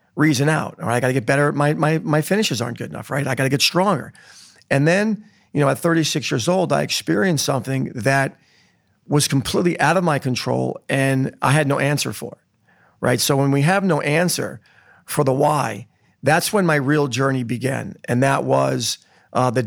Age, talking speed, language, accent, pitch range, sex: 40-59, 205 wpm, English, American, 125-155 Hz, male